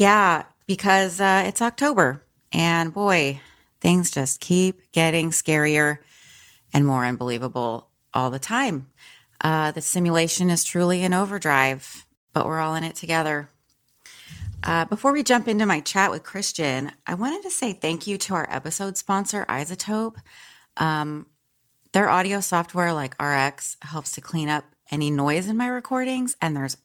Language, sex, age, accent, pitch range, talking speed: English, female, 30-49, American, 140-190 Hz, 150 wpm